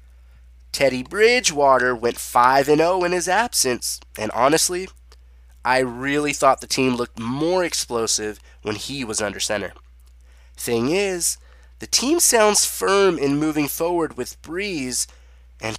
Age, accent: 20-39, American